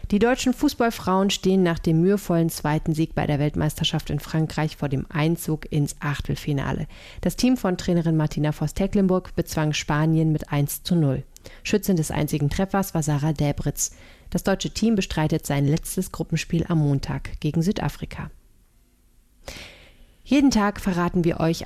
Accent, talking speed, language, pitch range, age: German, 150 wpm, German, 150-185 Hz, 30-49